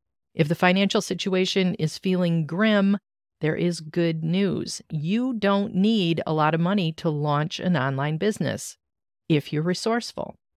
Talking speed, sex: 150 wpm, female